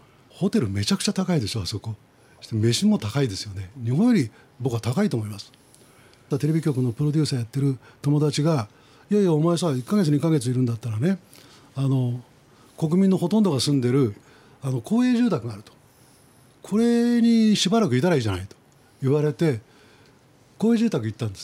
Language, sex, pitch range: Japanese, male, 125-175 Hz